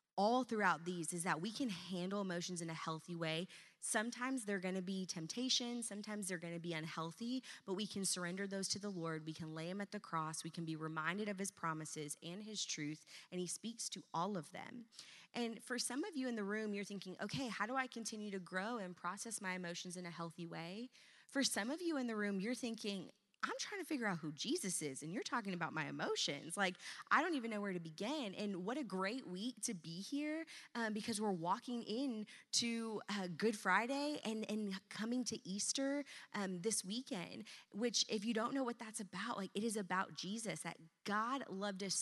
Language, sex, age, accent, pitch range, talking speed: English, female, 20-39, American, 180-230 Hz, 220 wpm